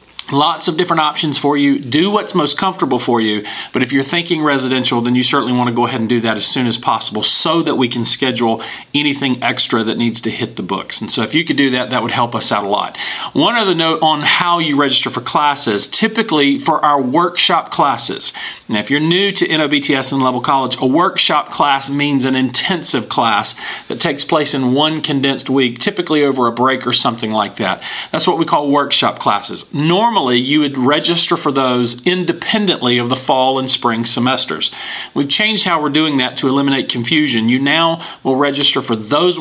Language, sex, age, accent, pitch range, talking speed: English, male, 40-59, American, 125-155 Hz, 210 wpm